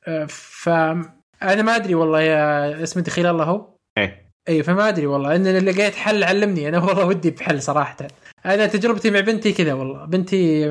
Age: 20-39